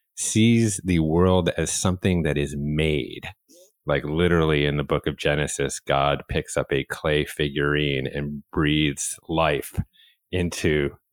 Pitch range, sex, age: 75-95 Hz, male, 30-49